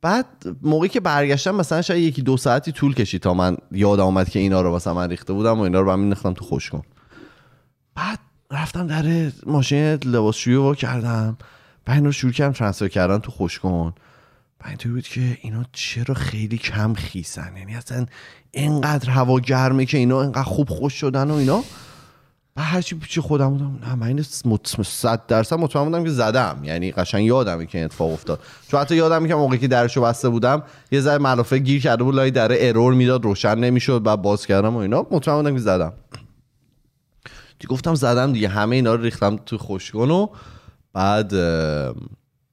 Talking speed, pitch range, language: 175 wpm, 100-140 Hz, Persian